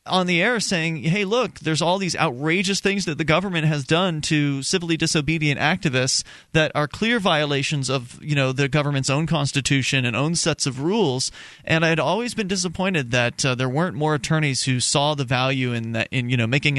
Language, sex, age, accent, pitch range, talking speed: English, male, 30-49, American, 135-185 Hz, 220 wpm